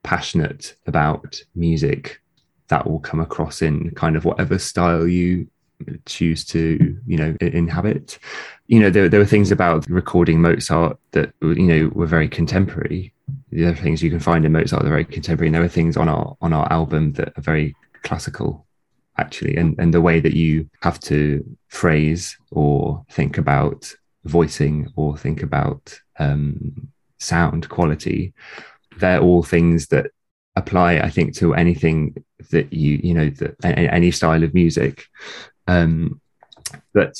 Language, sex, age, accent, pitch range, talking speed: English, male, 20-39, British, 80-85 Hz, 160 wpm